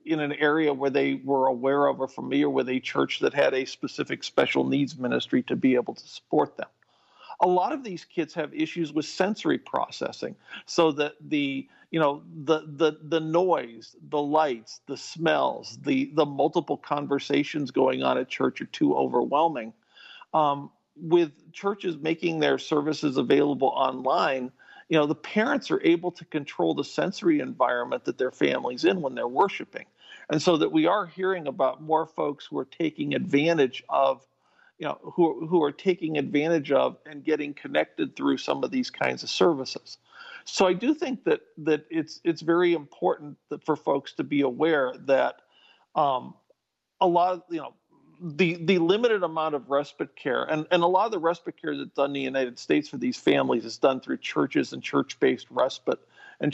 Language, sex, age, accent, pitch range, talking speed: English, male, 50-69, American, 145-175 Hz, 185 wpm